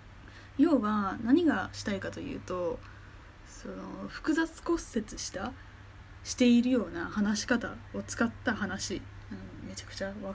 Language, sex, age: Japanese, female, 20-39